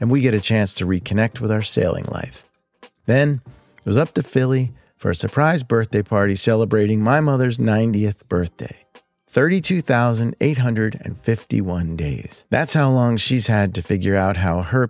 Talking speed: 155 wpm